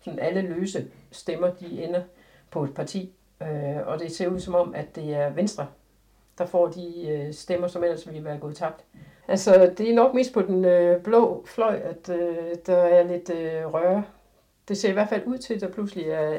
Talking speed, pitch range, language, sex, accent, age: 220 wpm, 160-195 Hz, Danish, female, native, 60-79